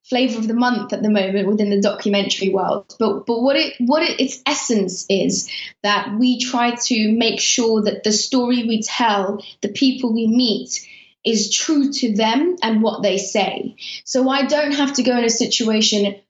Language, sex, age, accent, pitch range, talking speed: English, female, 20-39, British, 205-250 Hz, 190 wpm